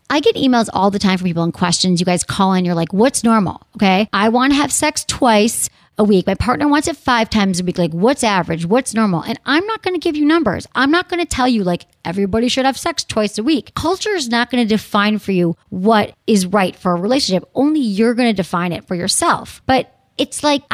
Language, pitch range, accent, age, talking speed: English, 190-245 Hz, American, 40-59, 250 wpm